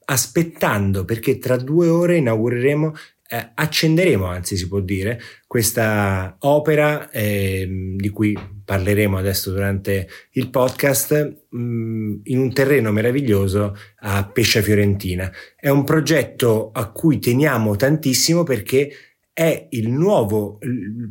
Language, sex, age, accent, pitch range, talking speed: Italian, male, 30-49, native, 105-125 Hz, 120 wpm